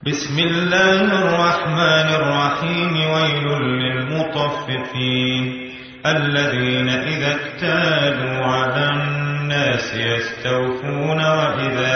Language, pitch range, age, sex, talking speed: English, 145-215 Hz, 30-49, male, 65 wpm